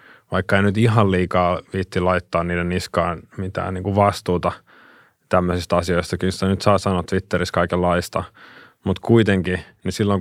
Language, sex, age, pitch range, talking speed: Finnish, male, 20-39, 90-105 Hz, 155 wpm